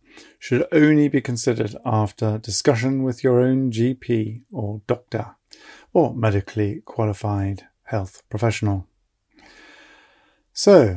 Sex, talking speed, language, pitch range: male, 100 wpm, English, 110-130 Hz